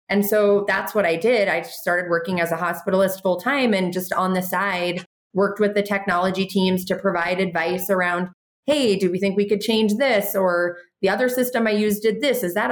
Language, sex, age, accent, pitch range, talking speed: English, female, 30-49, American, 175-205 Hz, 215 wpm